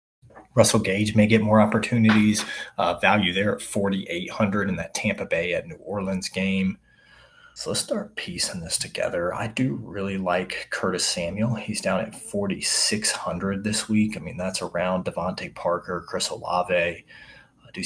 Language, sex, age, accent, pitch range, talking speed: English, male, 30-49, American, 85-110 Hz, 170 wpm